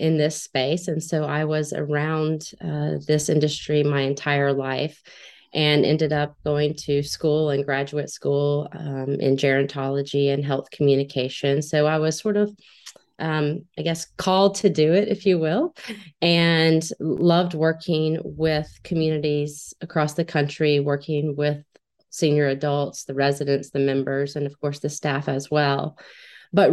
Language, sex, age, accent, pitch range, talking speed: English, female, 30-49, American, 145-165 Hz, 155 wpm